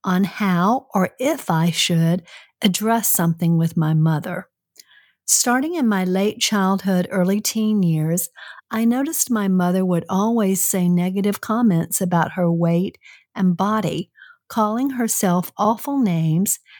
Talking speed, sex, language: 130 wpm, female, English